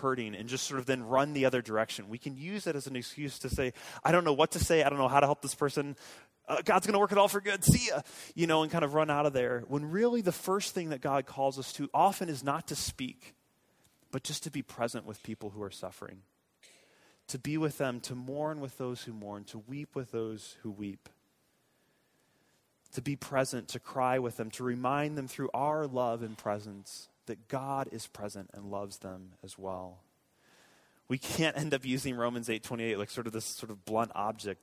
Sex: male